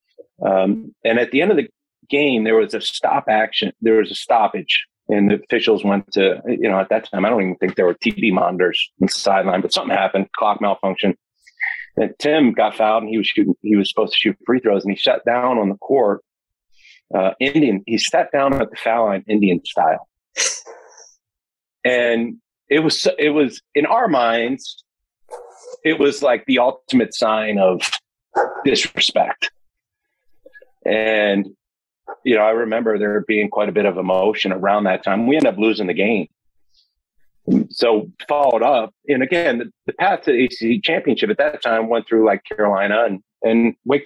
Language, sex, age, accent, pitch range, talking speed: English, male, 40-59, American, 100-120 Hz, 180 wpm